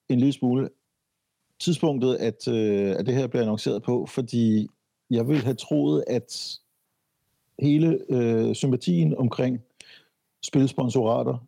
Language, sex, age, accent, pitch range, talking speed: Danish, male, 60-79, native, 105-130 Hz, 120 wpm